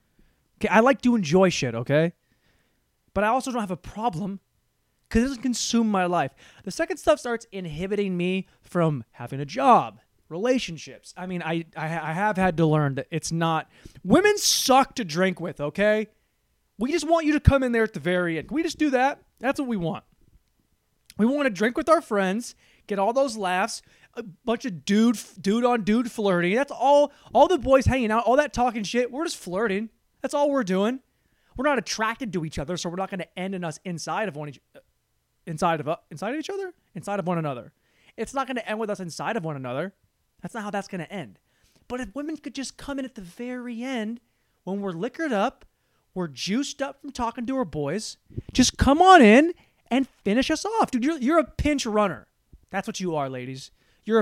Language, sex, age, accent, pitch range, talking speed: English, male, 20-39, American, 180-260 Hz, 215 wpm